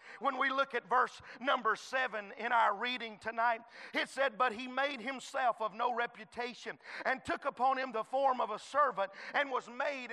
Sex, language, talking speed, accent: male, English, 190 wpm, American